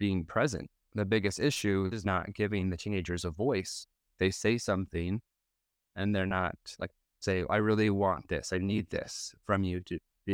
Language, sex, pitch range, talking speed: English, male, 85-105 Hz, 180 wpm